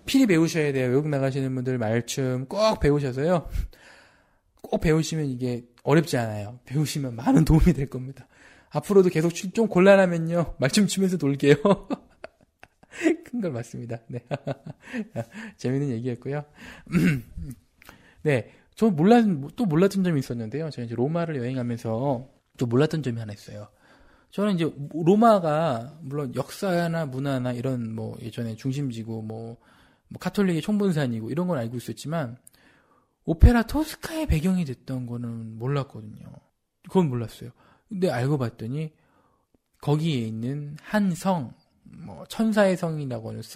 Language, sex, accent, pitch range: Korean, male, native, 120-180 Hz